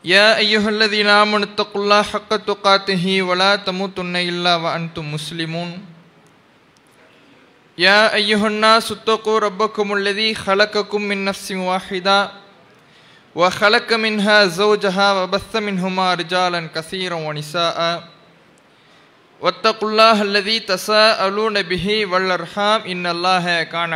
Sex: male